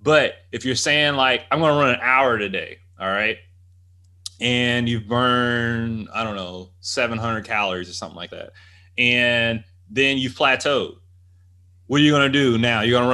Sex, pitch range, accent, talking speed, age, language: male, 100-130 Hz, American, 185 wpm, 20-39, English